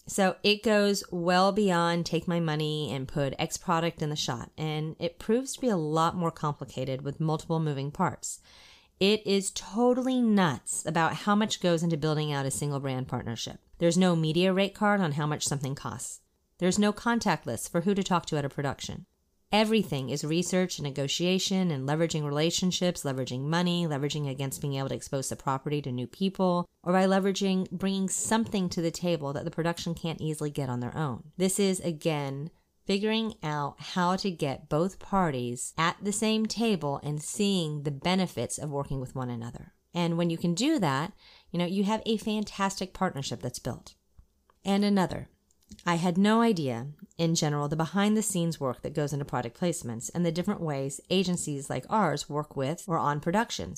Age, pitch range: 30-49, 145-190 Hz